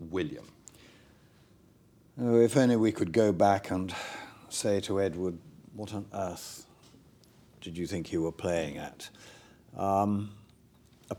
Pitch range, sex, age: 95-120 Hz, male, 50-69